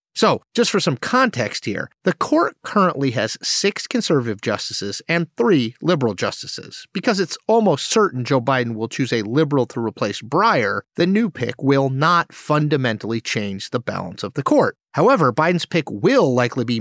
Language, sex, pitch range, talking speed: English, male, 125-180 Hz, 170 wpm